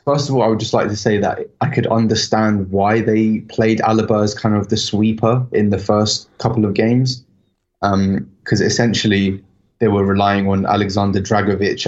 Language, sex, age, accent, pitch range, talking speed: English, male, 20-39, British, 100-110 Hz, 185 wpm